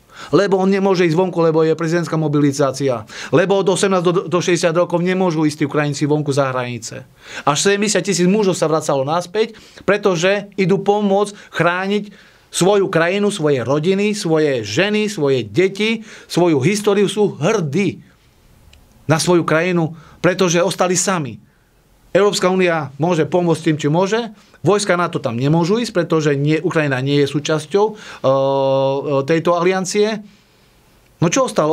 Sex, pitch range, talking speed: male, 150-195 Hz, 140 wpm